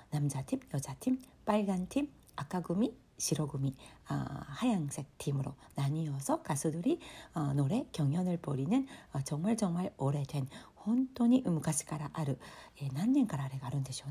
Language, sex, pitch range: Korean, female, 145-210 Hz